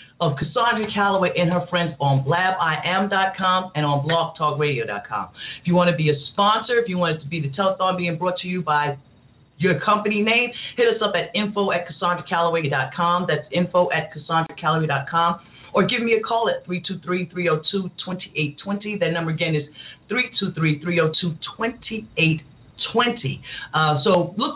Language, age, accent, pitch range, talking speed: English, 40-59, American, 155-205 Hz, 145 wpm